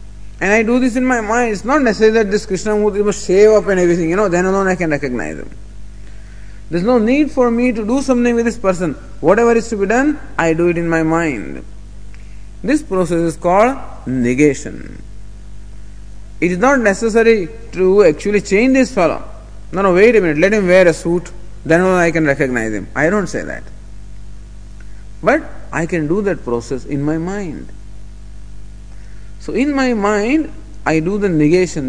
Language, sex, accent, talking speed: English, male, Indian, 185 wpm